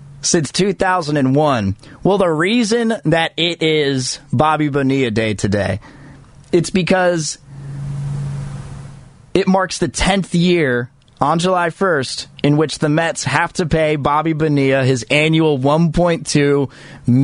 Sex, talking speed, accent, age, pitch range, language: male, 120 wpm, American, 30-49, 145-195 Hz, English